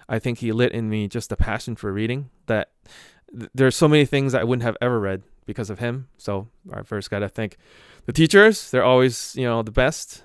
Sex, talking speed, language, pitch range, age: male, 230 wpm, English, 110-135 Hz, 20-39